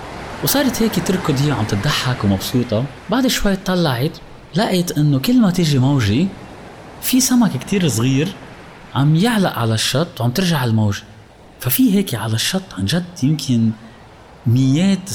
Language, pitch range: Arabic, 110-175 Hz